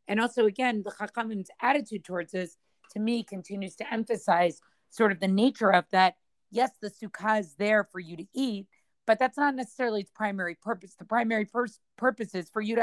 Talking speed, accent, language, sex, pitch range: 200 wpm, American, English, female, 175-220 Hz